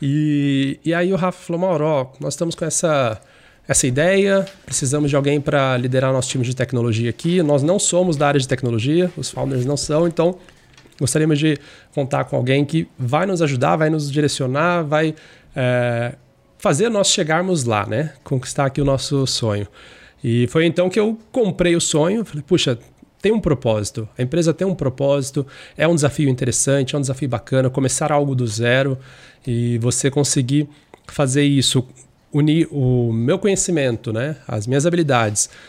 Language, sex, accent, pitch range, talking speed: Portuguese, male, Brazilian, 130-155 Hz, 175 wpm